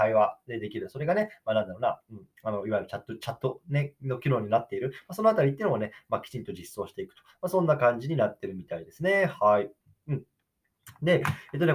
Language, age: Japanese, 20-39